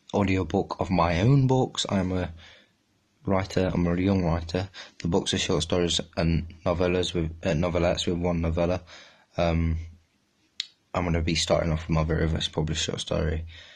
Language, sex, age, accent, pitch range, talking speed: English, male, 20-39, British, 85-95 Hz, 160 wpm